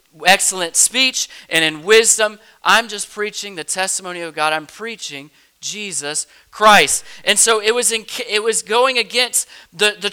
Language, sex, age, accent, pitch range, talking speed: English, male, 40-59, American, 175-230 Hz, 160 wpm